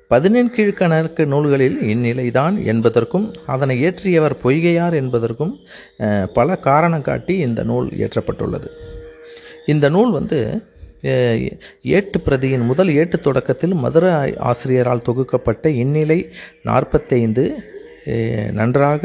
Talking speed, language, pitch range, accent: 90 wpm, Tamil, 125-165 Hz, native